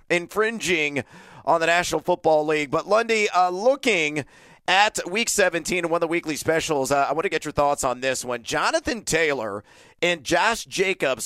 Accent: American